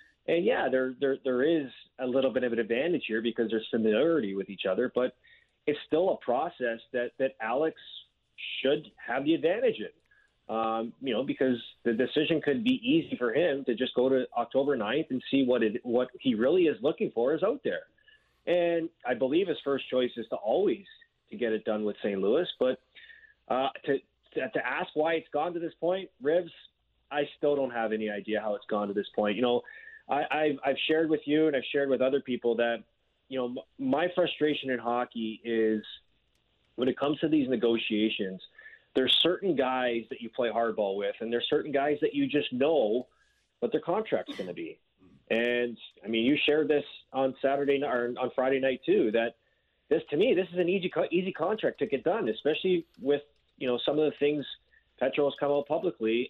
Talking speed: 200 wpm